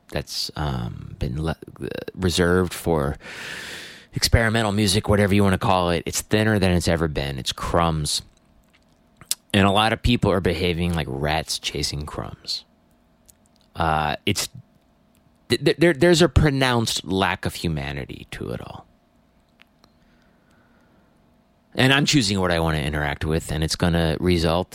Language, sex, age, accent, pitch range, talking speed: English, male, 30-49, American, 80-100 Hz, 145 wpm